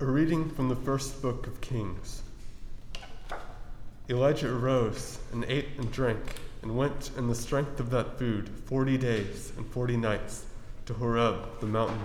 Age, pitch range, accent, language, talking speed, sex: 20-39, 105-125 Hz, American, English, 155 wpm, male